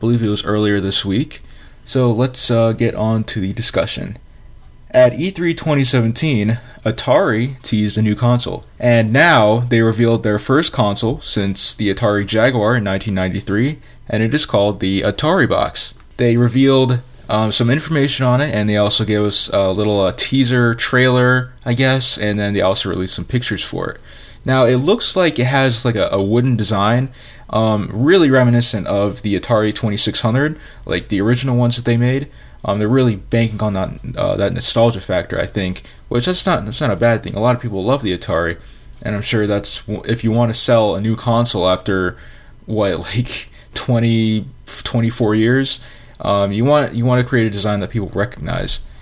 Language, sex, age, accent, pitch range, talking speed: English, male, 20-39, American, 105-125 Hz, 185 wpm